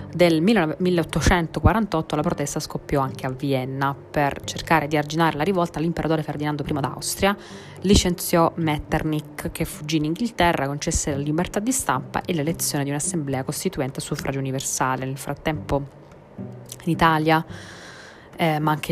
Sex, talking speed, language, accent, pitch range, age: female, 140 wpm, Italian, native, 140-165 Hz, 20-39